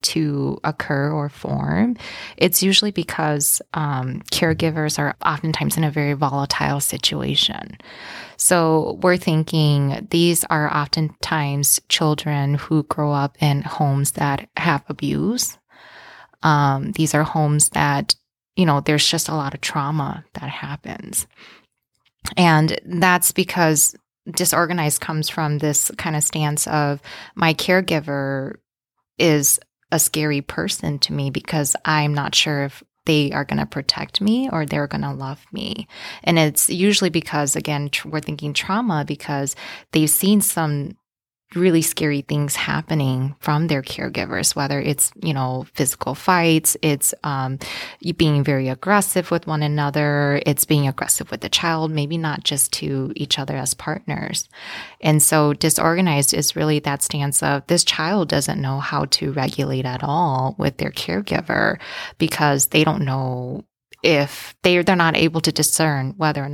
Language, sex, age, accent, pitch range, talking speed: English, female, 20-39, American, 140-165 Hz, 145 wpm